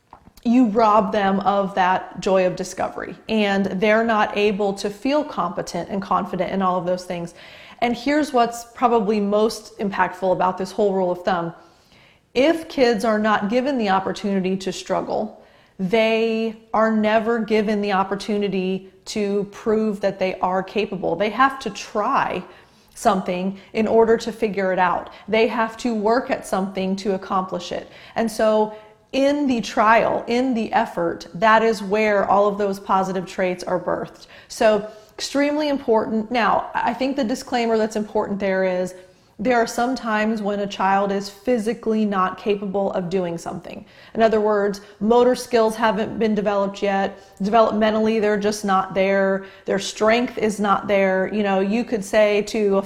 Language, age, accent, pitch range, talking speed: English, 30-49, American, 195-225 Hz, 165 wpm